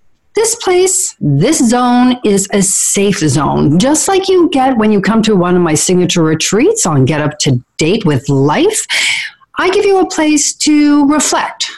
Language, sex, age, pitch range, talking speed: English, female, 50-69, 200-310 Hz, 180 wpm